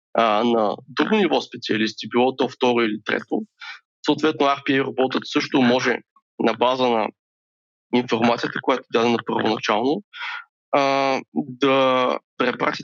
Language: Bulgarian